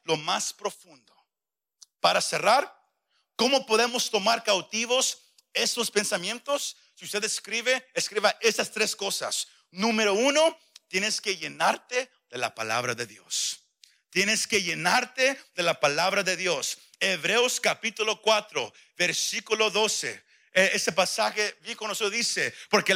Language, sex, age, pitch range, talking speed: Spanish, male, 50-69, 210-270 Hz, 125 wpm